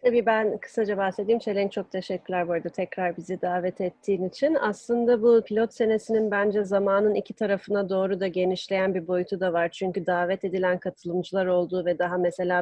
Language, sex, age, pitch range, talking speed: Turkish, female, 30-49, 180-210 Hz, 175 wpm